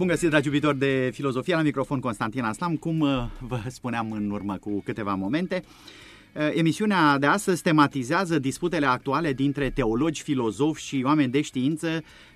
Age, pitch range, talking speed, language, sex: 30-49, 125-155 Hz, 150 wpm, Romanian, male